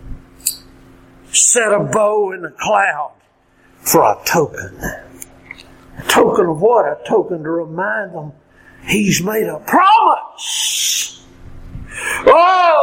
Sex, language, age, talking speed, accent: male, English, 50-69, 110 wpm, American